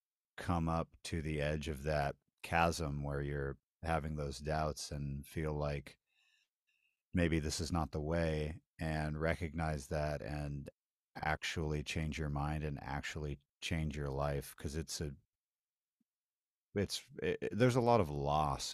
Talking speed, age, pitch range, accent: 140 wpm, 40-59, 75-85 Hz, American